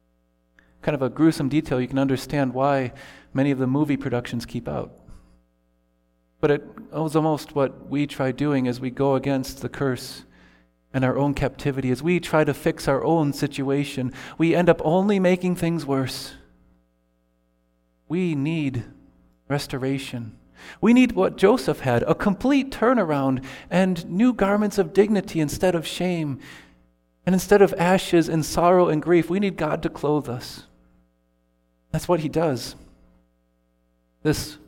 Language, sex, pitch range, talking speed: English, male, 125-165 Hz, 150 wpm